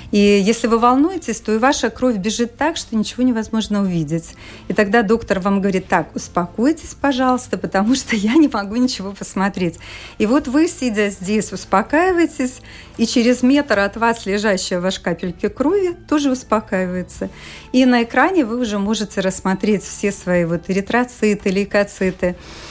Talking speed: 150 wpm